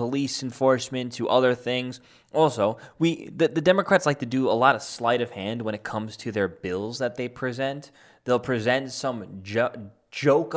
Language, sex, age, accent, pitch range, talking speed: English, male, 20-39, American, 120-160 Hz, 180 wpm